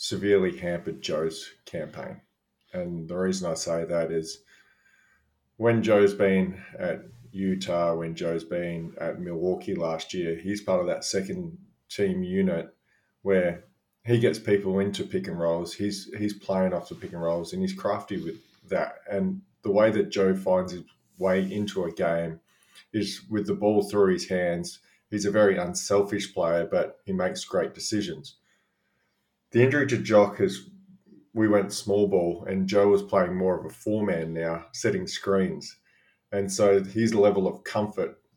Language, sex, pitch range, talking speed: English, male, 90-110 Hz, 165 wpm